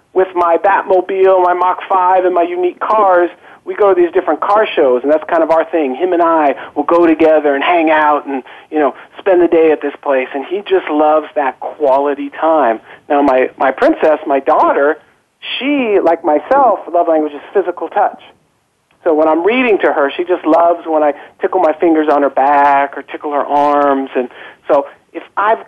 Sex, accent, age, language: male, American, 40-59, English